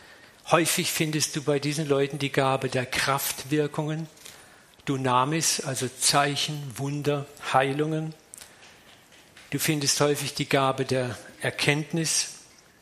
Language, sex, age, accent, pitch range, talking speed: German, male, 50-69, German, 135-155 Hz, 105 wpm